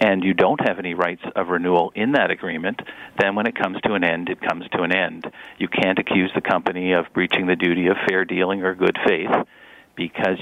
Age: 50-69